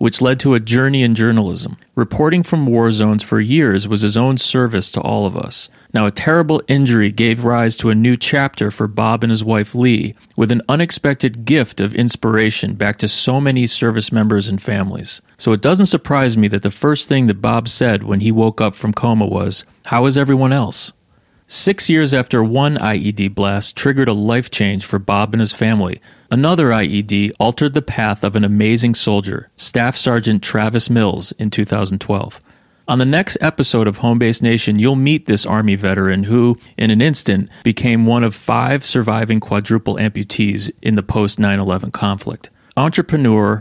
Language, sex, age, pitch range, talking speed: English, male, 30-49, 105-130 Hz, 185 wpm